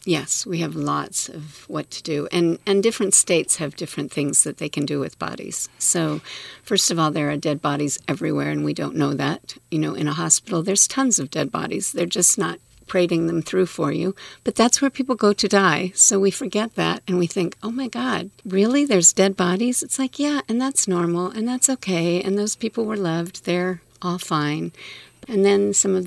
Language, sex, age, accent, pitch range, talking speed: English, female, 50-69, American, 150-195 Hz, 220 wpm